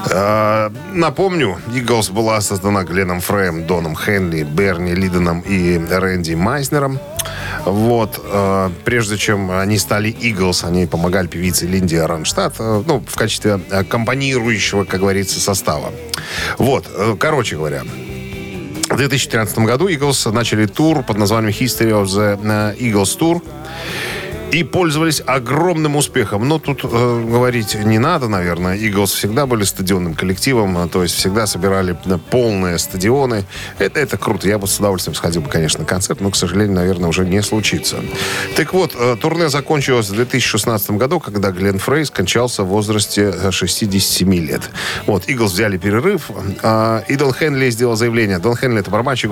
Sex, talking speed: male, 145 wpm